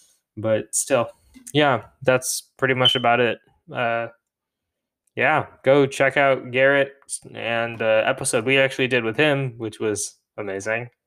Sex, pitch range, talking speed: male, 120-135 Hz, 135 wpm